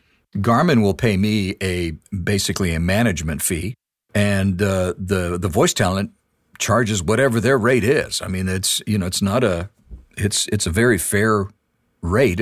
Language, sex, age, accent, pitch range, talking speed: English, male, 50-69, American, 90-115 Hz, 165 wpm